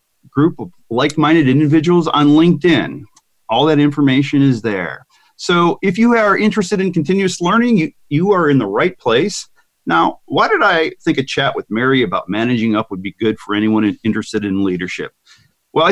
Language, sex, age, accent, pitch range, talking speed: English, male, 40-59, American, 120-185 Hz, 175 wpm